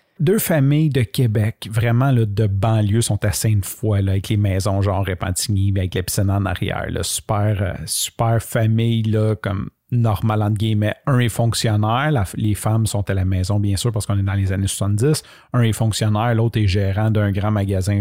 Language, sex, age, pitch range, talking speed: French, male, 40-59, 105-125 Hz, 195 wpm